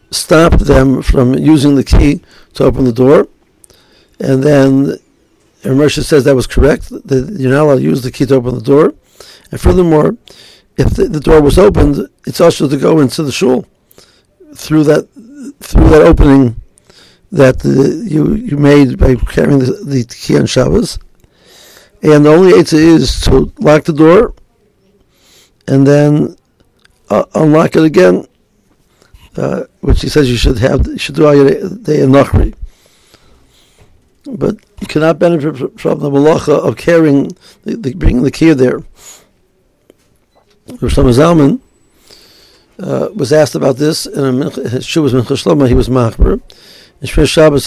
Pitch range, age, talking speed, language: 130-155 Hz, 60-79, 155 wpm, English